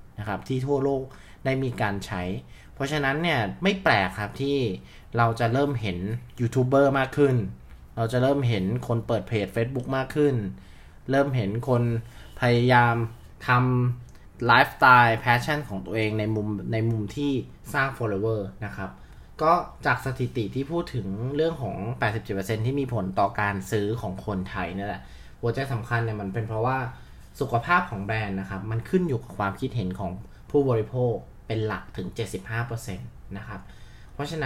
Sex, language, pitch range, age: male, Thai, 105-130 Hz, 20-39